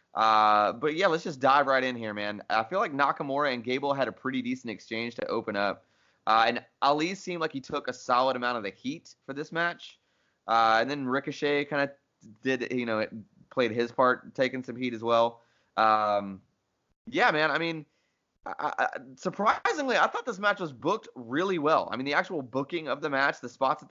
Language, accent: English, American